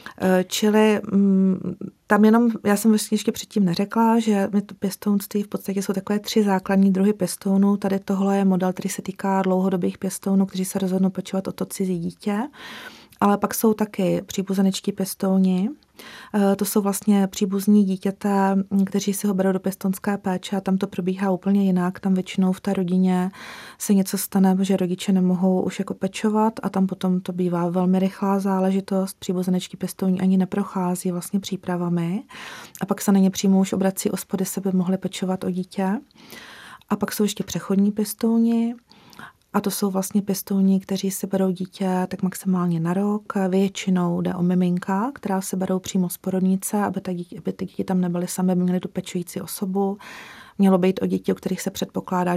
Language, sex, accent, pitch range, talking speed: Czech, female, native, 185-205 Hz, 175 wpm